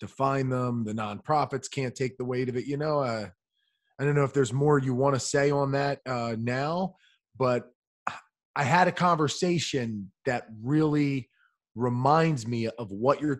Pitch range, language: 130-155 Hz, English